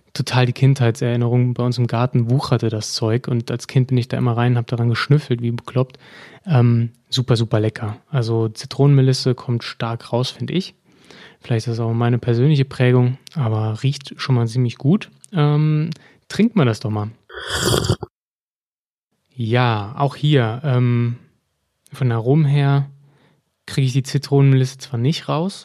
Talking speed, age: 160 wpm, 20-39